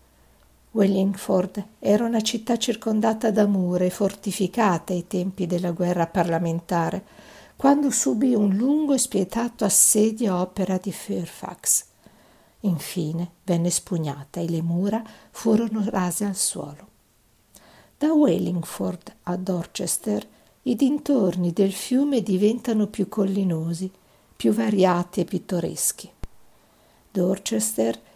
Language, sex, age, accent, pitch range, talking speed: Italian, female, 50-69, native, 175-220 Hz, 105 wpm